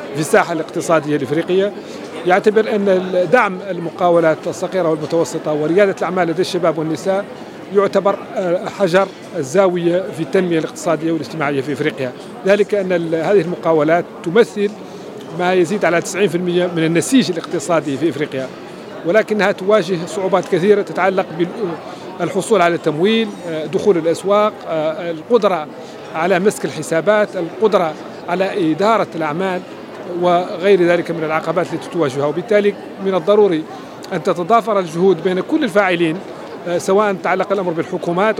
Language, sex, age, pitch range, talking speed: Arabic, male, 40-59, 170-205 Hz, 115 wpm